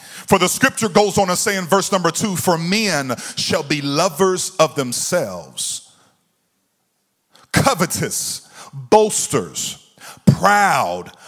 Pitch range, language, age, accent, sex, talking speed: 170-210 Hz, English, 40-59, American, male, 110 wpm